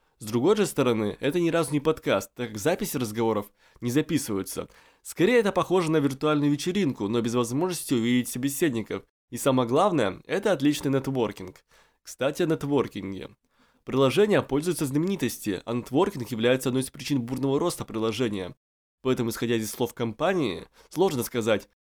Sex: male